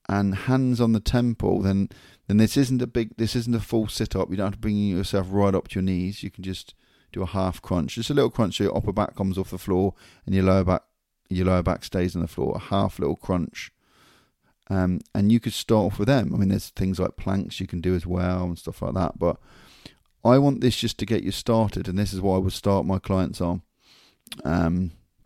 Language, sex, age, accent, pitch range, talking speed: English, male, 30-49, British, 90-110 Hz, 250 wpm